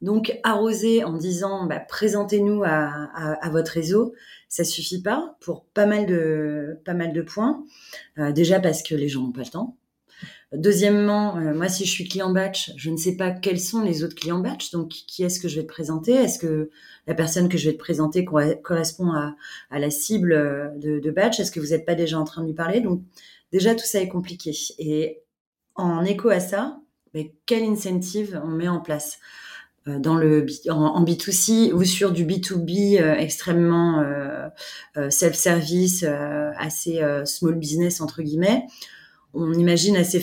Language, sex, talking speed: French, female, 190 wpm